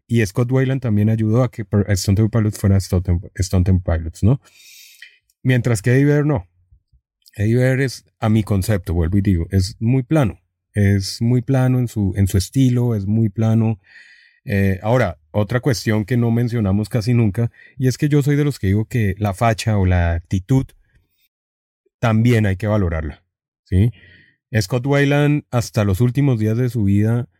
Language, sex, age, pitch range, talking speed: English, male, 30-49, 100-125 Hz, 175 wpm